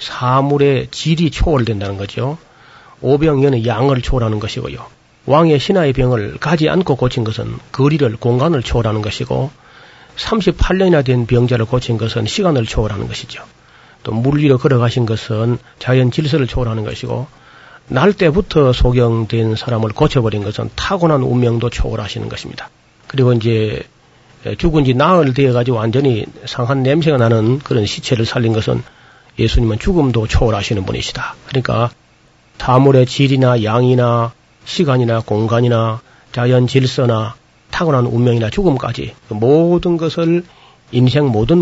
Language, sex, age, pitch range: Korean, male, 40-59, 115-140 Hz